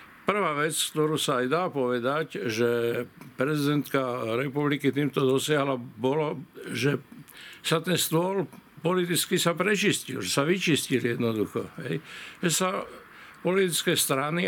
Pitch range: 130-165 Hz